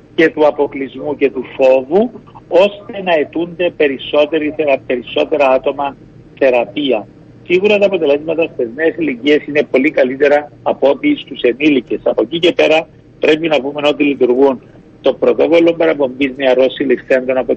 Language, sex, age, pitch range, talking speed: Greek, male, 50-69, 130-170 Hz, 135 wpm